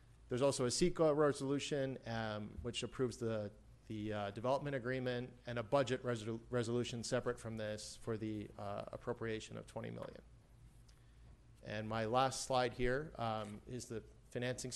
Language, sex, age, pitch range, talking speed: English, male, 40-59, 110-125 Hz, 150 wpm